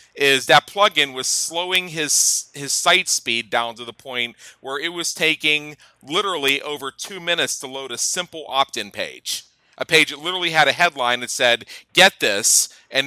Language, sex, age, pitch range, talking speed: English, male, 40-59, 125-155 Hz, 180 wpm